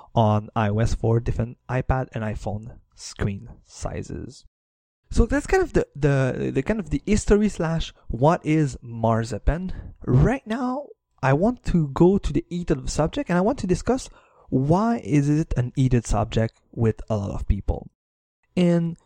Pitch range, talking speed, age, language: 120-180 Hz, 160 wpm, 20-39, English